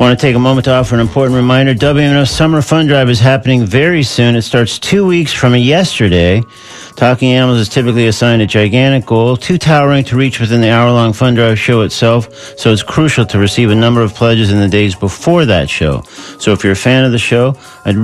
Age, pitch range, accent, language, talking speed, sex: 50-69, 110-135 Hz, American, English, 225 wpm, male